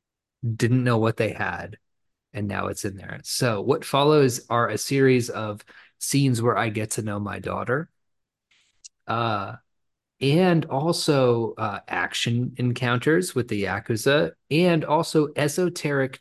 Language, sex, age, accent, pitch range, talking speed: English, male, 20-39, American, 105-130 Hz, 135 wpm